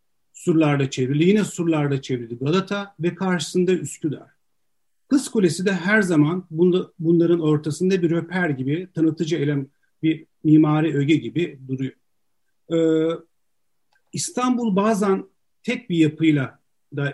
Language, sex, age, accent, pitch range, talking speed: Turkish, male, 50-69, native, 145-180 Hz, 110 wpm